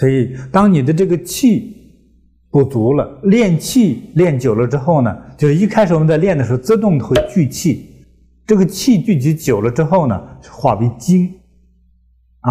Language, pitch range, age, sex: Chinese, 110-175 Hz, 60-79, male